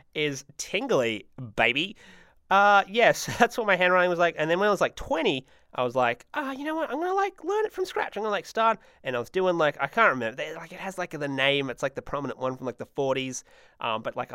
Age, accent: 20-39, Australian